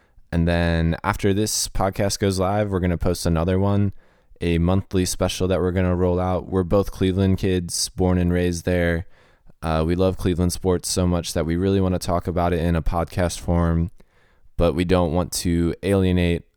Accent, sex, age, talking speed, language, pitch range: American, male, 20-39, 200 wpm, English, 85-95 Hz